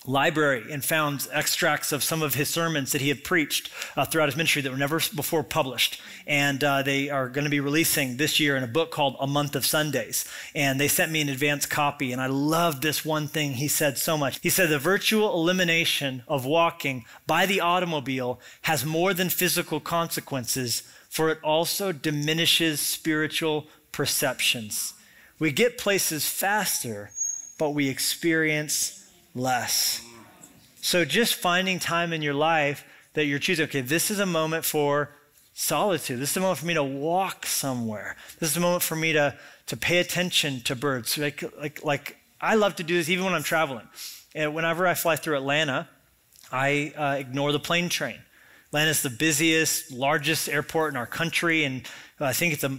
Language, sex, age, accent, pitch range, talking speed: English, male, 30-49, American, 140-165 Hz, 185 wpm